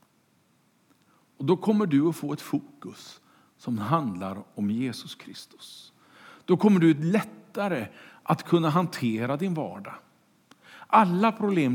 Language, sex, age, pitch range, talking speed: Swedish, male, 50-69, 130-185 Hz, 125 wpm